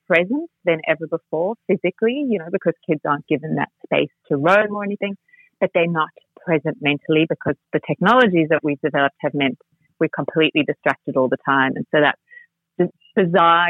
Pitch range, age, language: 155-195 Hz, 30-49, English